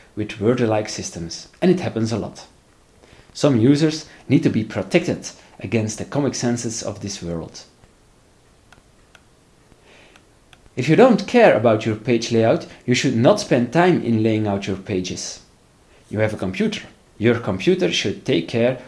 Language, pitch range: English, 100-140 Hz